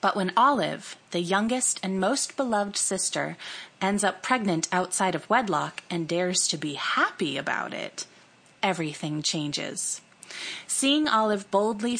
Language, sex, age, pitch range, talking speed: English, female, 30-49, 165-200 Hz, 135 wpm